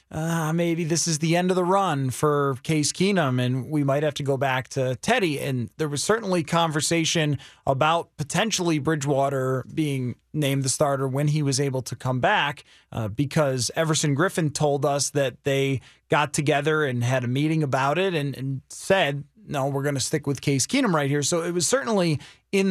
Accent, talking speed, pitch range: American, 195 wpm, 140-170 Hz